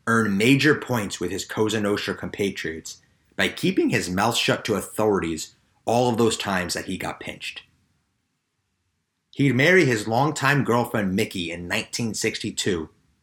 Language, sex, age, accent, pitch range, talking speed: English, male, 30-49, American, 90-135 Hz, 135 wpm